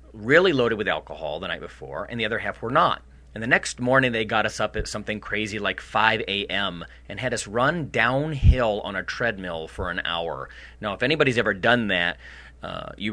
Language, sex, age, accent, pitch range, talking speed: English, male, 30-49, American, 95-120 Hz, 210 wpm